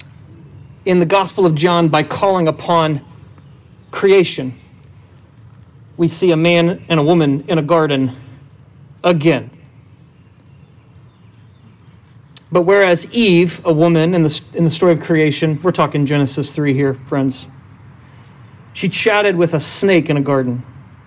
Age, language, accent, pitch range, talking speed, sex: 40-59, English, American, 130-175 Hz, 130 wpm, male